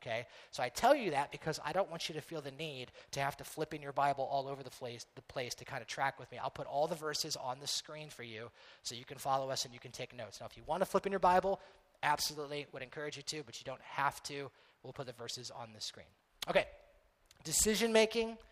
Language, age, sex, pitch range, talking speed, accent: English, 30-49, male, 135-175 Hz, 260 wpm, American